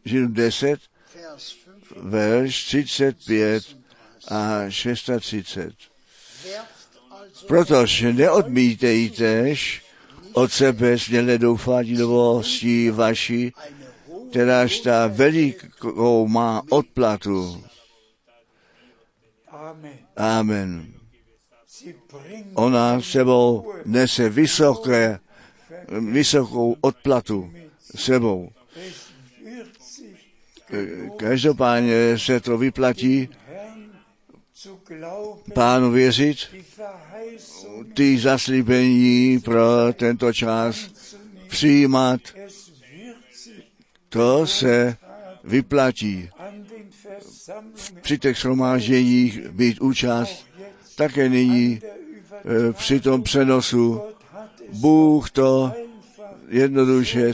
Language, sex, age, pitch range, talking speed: Czech, male, 60-79, 120-160 Hz, 60 wpm